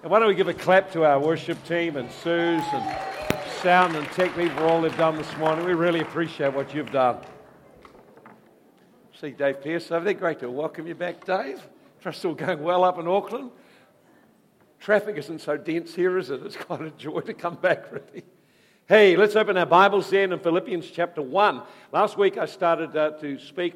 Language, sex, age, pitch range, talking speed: English, male, 60-79, 160-230 Hz, 195 wpm